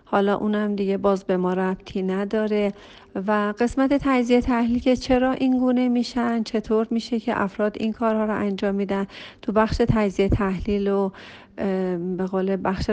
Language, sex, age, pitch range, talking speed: Persian, female, 40-59, 195-245 Hz, 150 wpm